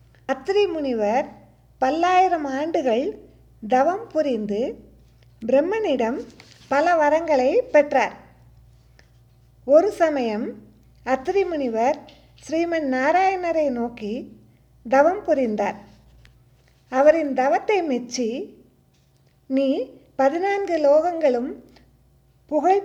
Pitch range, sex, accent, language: 240-320 Hz, female, native, Tamil